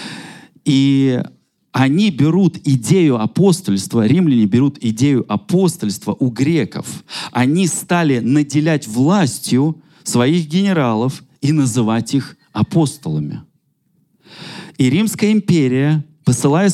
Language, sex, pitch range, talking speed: Russian, male, 120-165 Hz, 90 wpm